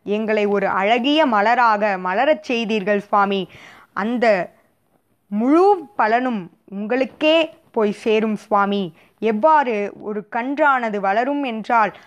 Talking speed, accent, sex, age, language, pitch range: 95 wpm, native, female, 20-39, Tamil, 200-260 Hz